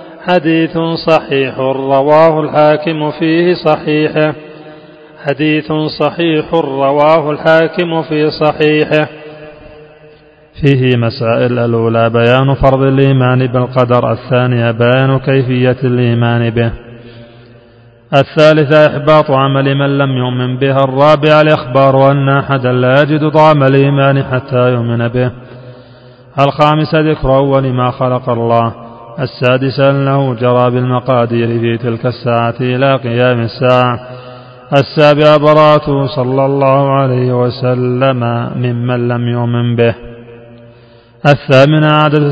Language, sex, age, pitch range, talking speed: Arabic, male, 40-59, 125-155 Hz, 100 wpm